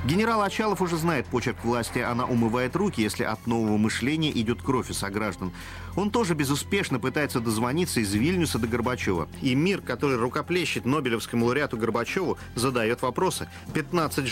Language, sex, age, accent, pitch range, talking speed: Russian, male, 40-59, native, 115-170 Hz, 150 wpm